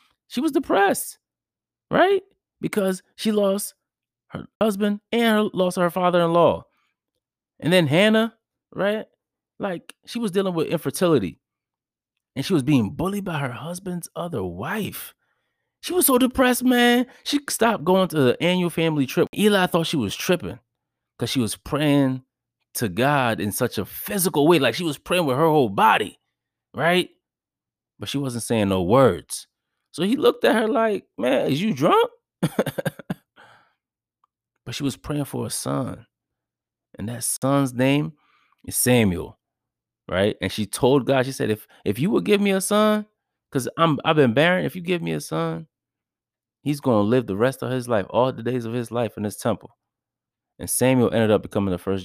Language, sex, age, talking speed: English, male, 20-39, 175 wpm